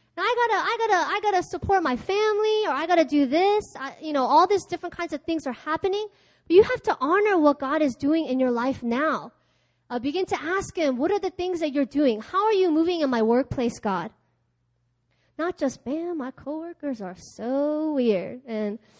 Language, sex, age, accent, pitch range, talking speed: English, female, 20-39, American, 215-330 Hz, 220 wpm